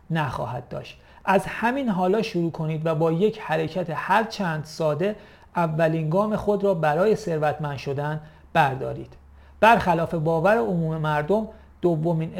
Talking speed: 130 wpm